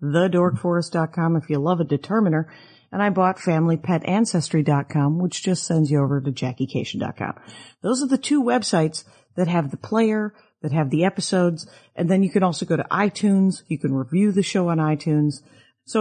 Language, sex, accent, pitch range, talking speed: English, female, American, 150-205 Hz, 170 wpm